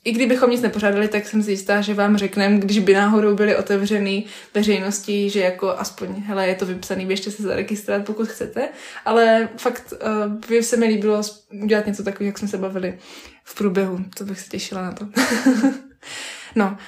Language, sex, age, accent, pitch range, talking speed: Czech, female, 20-39, native, 195-215 Hz, 185 wpm